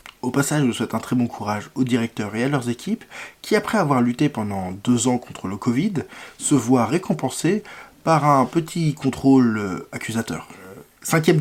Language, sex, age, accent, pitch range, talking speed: French, male, 20-39, French, 120-145 Hz, 180 wpm